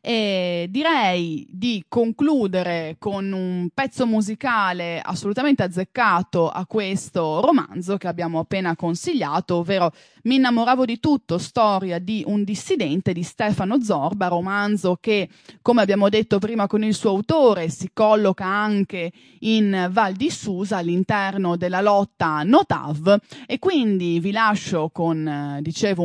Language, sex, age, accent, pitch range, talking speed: English, female, 20-39, Italian, 175-215 Hz, 130 wpm